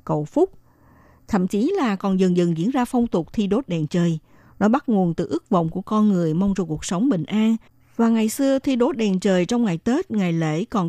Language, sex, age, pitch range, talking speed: Vietnamese, female, 60-79, 175-230 Hz, 240 wpm